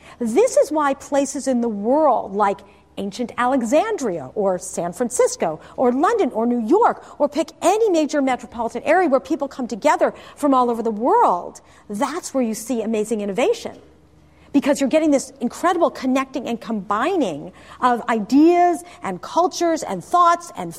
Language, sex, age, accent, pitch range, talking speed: English, female, 40-59, American, 230-325 Hz, 155 wpm